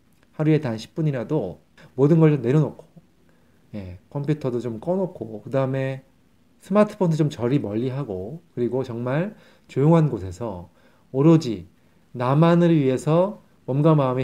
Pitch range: 110-160 Hz